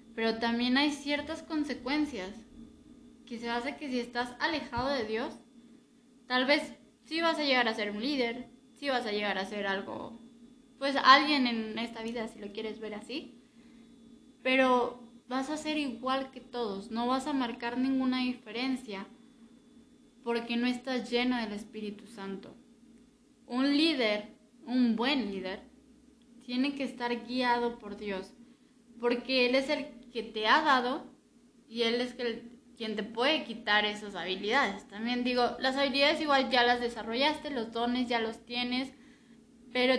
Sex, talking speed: female, 155 wpm